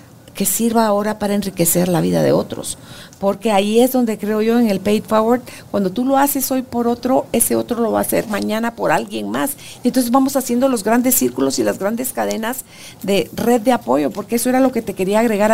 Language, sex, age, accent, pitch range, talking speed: Spanish, female, 40-59, Mexican, 180-240 Hz, 225 wpm